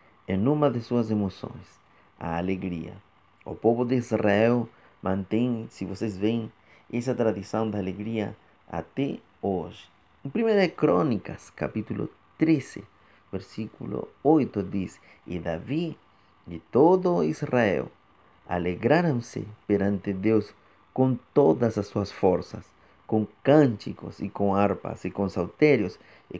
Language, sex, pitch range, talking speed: Portuguese, male, 100-120 Hz, 115 wpm